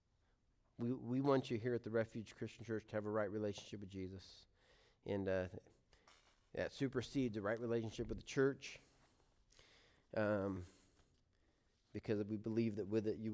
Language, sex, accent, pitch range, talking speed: English, male, American, 95-115 Hz, 160 wpm